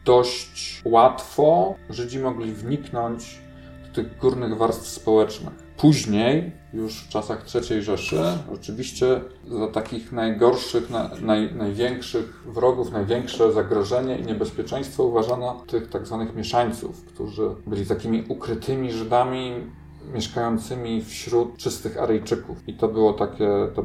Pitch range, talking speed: 105-125 Hz, 120 wpm